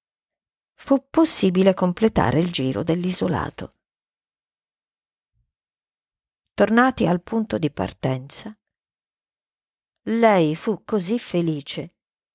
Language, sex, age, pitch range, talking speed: Italian, female, 50-69, 175-240 Hz, 75 wpm